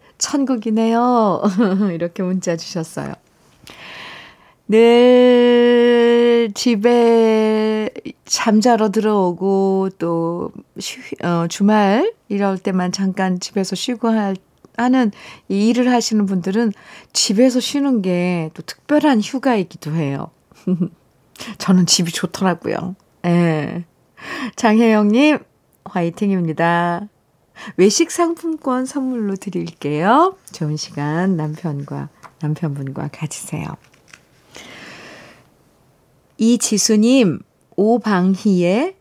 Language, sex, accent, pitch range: Korean, female, native, 175-240 Hz